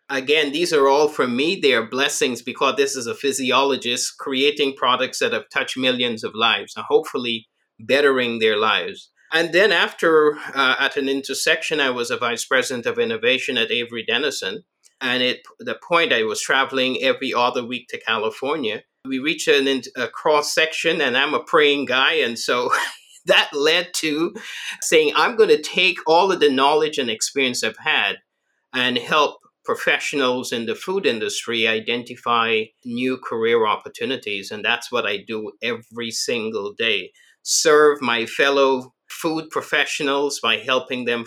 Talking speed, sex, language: 160 wpm, male, English